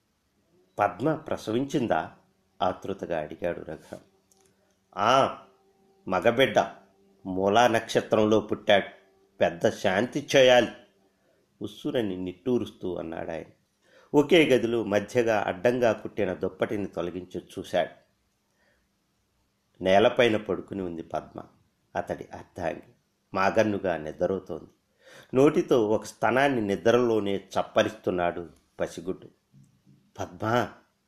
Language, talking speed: Telugu, 75 wpm